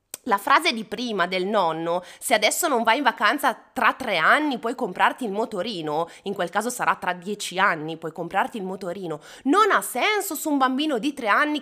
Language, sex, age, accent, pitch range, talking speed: Italian, female, 20-39, native, 195-275 Hz, 200 wpm